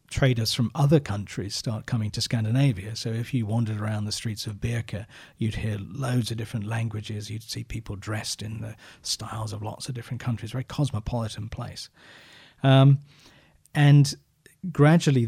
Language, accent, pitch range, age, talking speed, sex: Swedish, British, 110-130 Hz, 40-59, 160 wpm, male